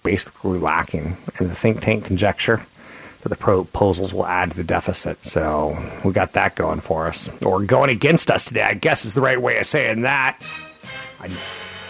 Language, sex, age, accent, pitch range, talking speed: English, male, 30-49, American, 95-115 Hz, 180 wpm